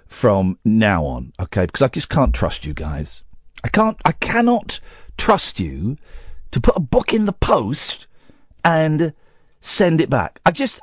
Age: 50-69